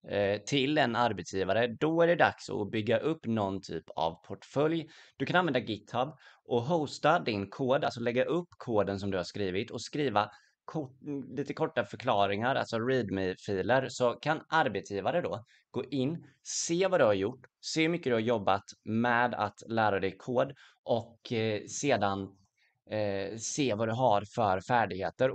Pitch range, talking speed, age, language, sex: 100-135 Hz, 160 wpm, 20-39, Swedish, male